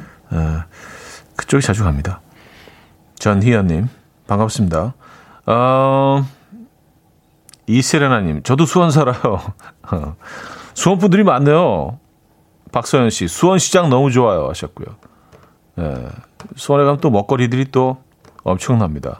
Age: 40-59